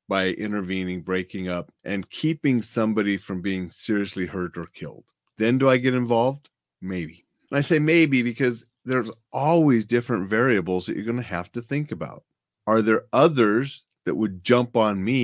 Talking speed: 170 wpm